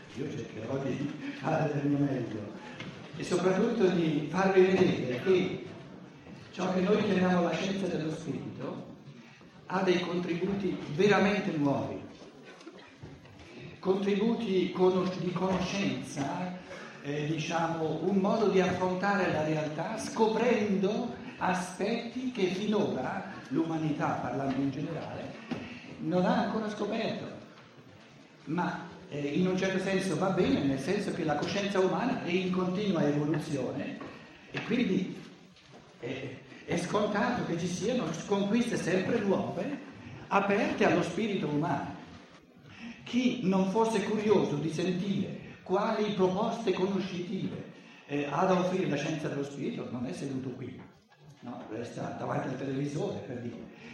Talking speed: 125 wpm